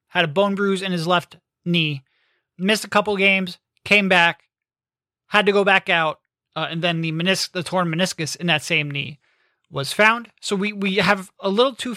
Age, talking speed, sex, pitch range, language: 30-49, 200 wpm, male, 165-200 Hz, English